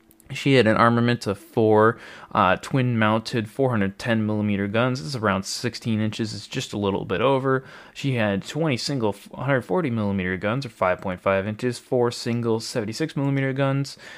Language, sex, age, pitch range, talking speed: English, male, 20-39, 105-135 Hz, 160 wpm